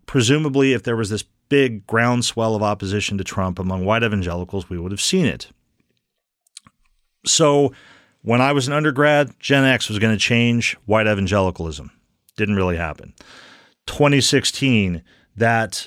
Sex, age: male, 40-59